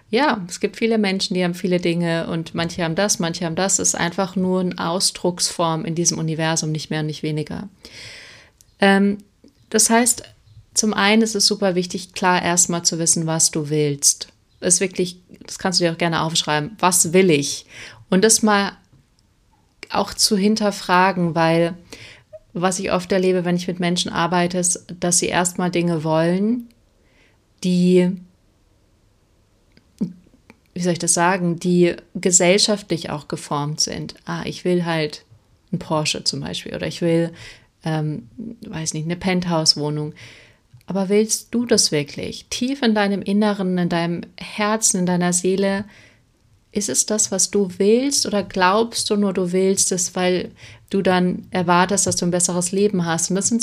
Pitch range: 165-200 Hz